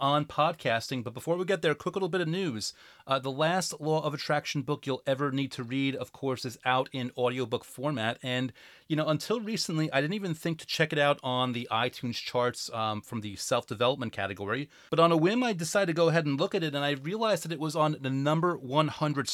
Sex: male